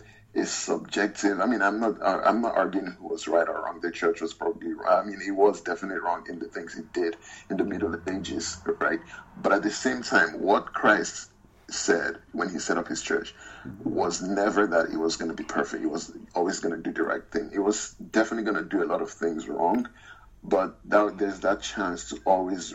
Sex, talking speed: male, 225 wpm